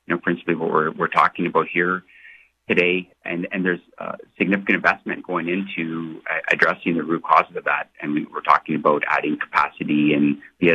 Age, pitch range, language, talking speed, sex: 30-49, 80-95 Hz, English, 185 wpm, male